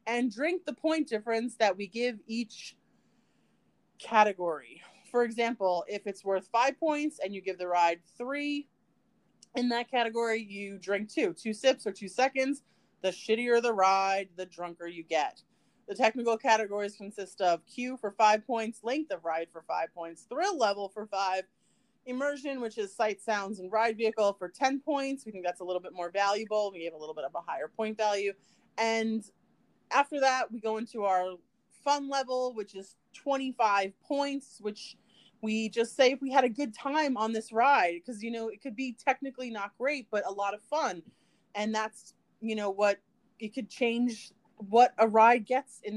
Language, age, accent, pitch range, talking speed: English, 30-49, American, 200-260 Hz, 185 wpm